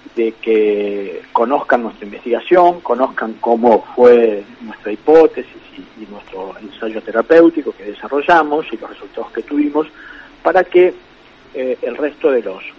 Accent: Argentinian